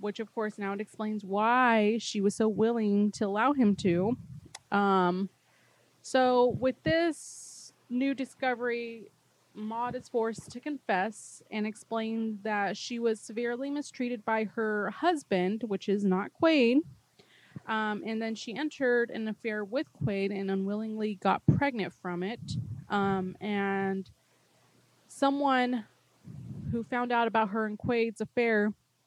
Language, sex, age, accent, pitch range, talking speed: English, female, 20-39, American, 200-240 Hz, 135 wpm